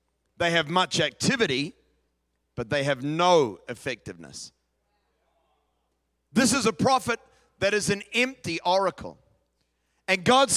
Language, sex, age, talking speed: English, male, 40-59, 115 wpm